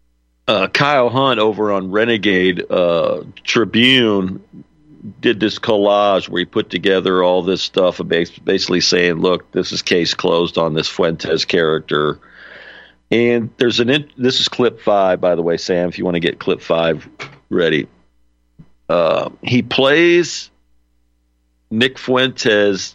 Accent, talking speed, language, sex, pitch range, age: American, 140 wpm, English, male, 70-110 Hz, 50-69